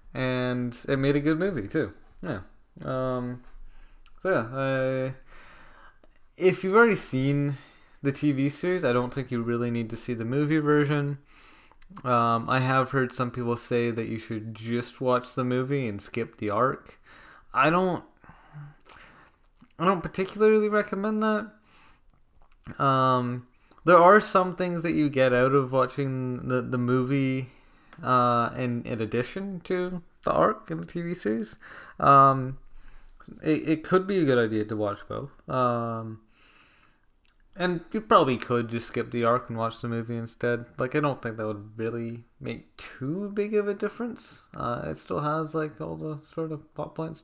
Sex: male